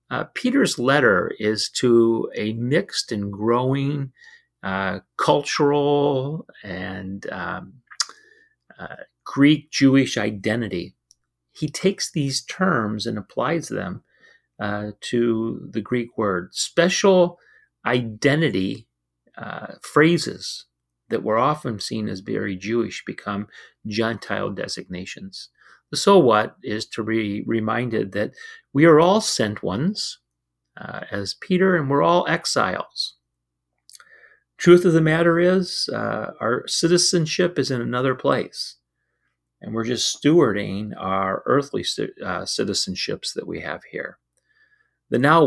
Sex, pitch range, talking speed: male, 100-160 Hz, 115 wpm